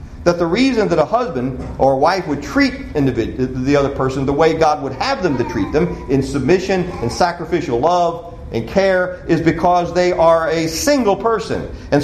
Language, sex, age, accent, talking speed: English, male, 40-59, American, 185 wpm